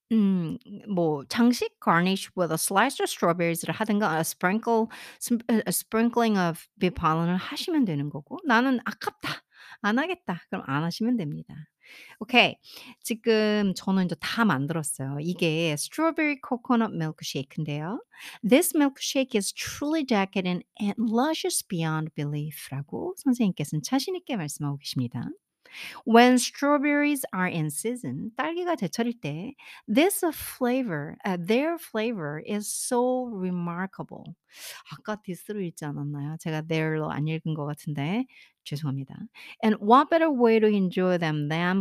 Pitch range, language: 160-245 Hz, Korean